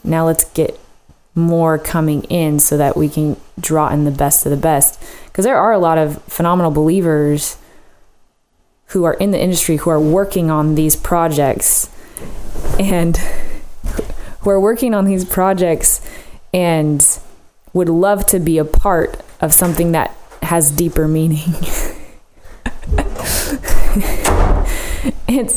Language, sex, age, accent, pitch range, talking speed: English, female, 20-39, American, 150-175 Hz, 135 wpm